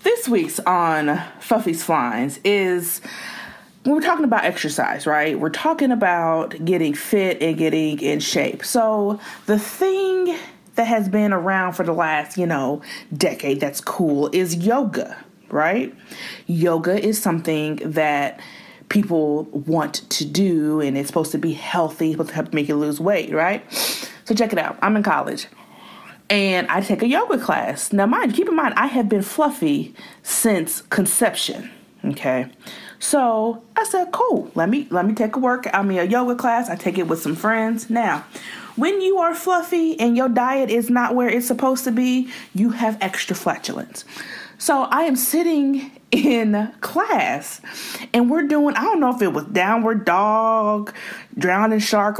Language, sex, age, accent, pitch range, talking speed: English, female, 30-49, American, 175-255 Hz, 170 wpm